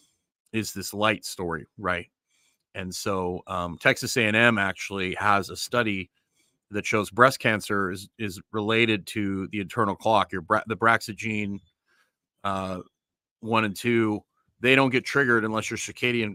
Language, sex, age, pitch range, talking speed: English, male, 30-49, 100-115 Hz, 150 wpm